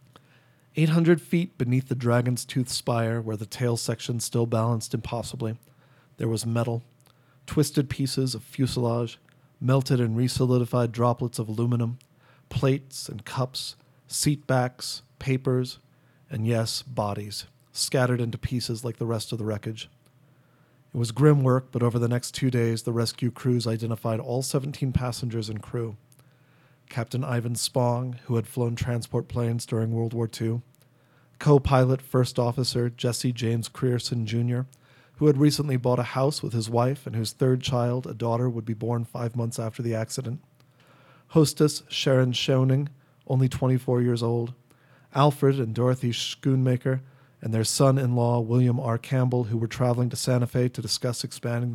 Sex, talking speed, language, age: male, 155 wpm, English, 40-59